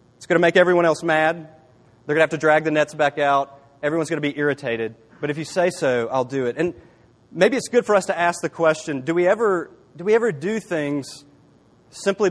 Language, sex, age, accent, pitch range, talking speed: English, male, 30-49, American, 140-185 Hz, 240 wpm